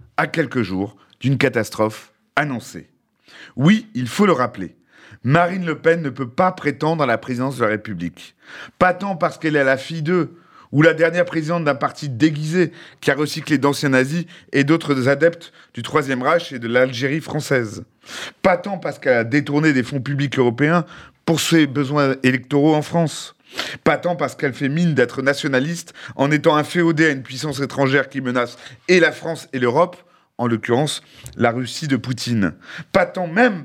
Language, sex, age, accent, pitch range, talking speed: French, male, 30-49, French, 125-160 Hz, 180 wpm